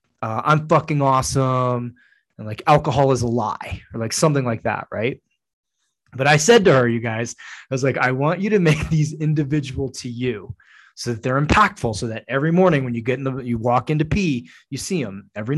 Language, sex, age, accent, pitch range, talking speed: English, male, 20-39, American, 120-150 Hz, 215 wpm